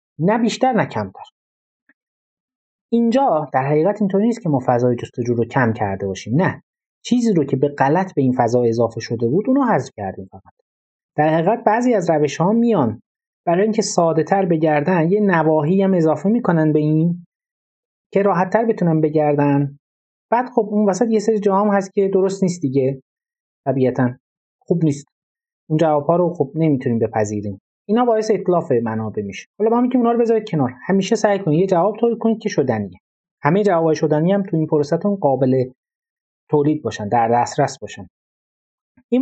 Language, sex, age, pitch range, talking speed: Persian, male, 30-49, 135-215 Hz, 165 wpm